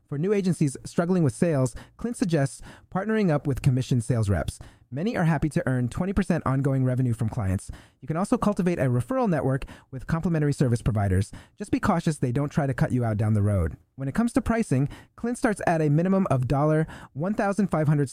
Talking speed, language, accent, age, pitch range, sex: 200 wpm, English, American, 30-49, 125-180 Hz, male